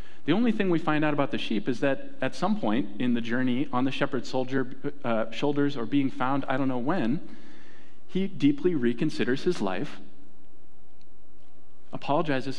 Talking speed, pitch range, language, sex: 160 wpm, 125-175 Hz, English, male